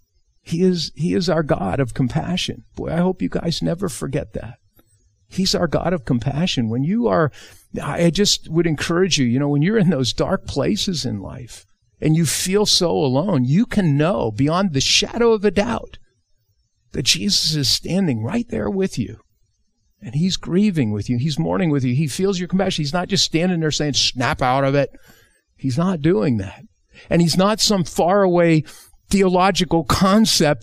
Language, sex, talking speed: English, male, 190 wpm